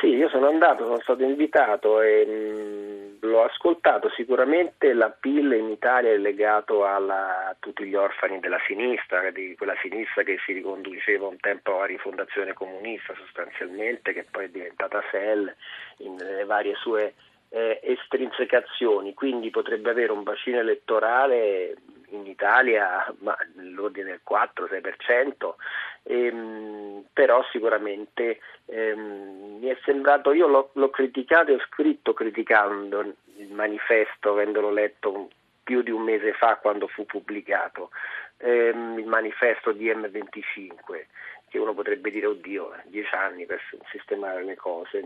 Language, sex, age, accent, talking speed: Italian, male, 40-59, native, 135 wpm